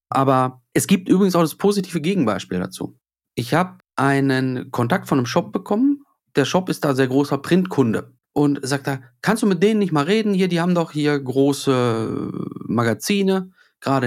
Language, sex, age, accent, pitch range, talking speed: German, male, 40-59, German, 135-185 Hz, 180 wpm